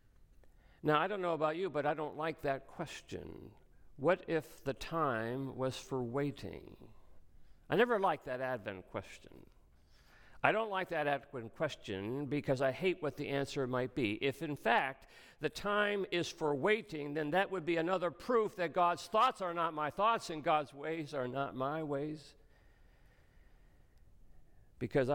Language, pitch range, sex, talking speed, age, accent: English, 95-155 Hz, male, 160 wpm, 50-69, American